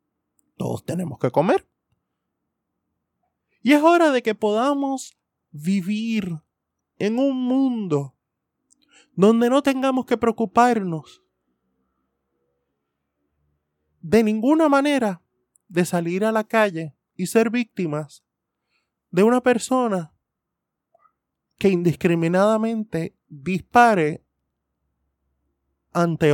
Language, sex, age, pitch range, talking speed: Spanish, male, 20-39, 140-220 Hz, 85 wpm